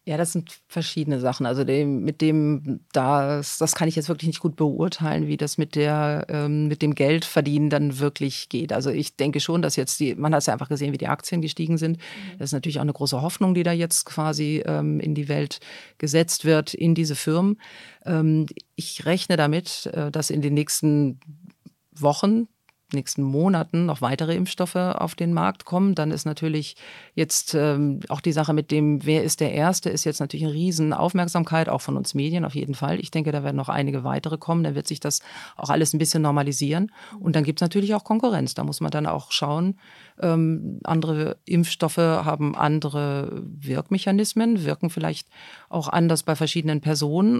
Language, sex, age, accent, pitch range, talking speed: German, female, 50-69, German, 145-170 Hz, 190 wpm